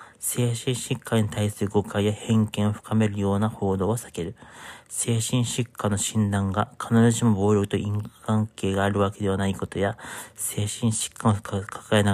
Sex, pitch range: male, 100-115 Hz